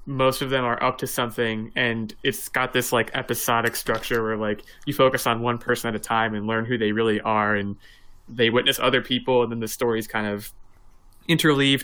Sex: male